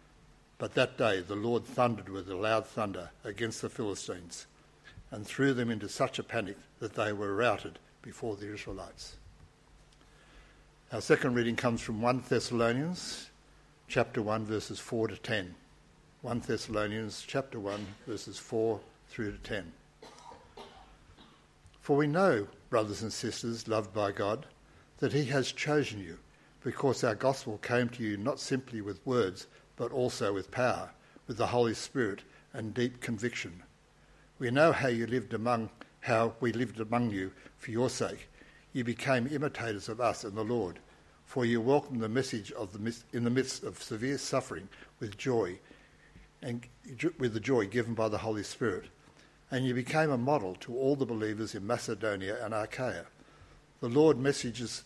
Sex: male